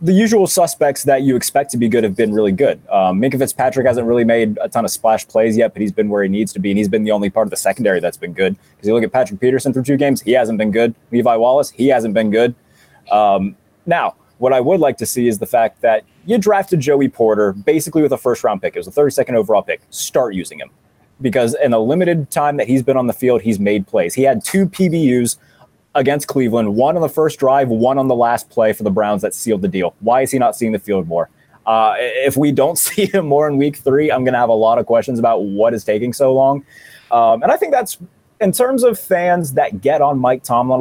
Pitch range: 110-145 Hz